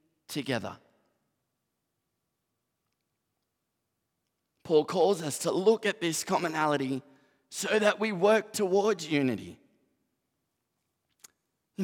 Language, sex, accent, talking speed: English, male, Australian, 80 wpm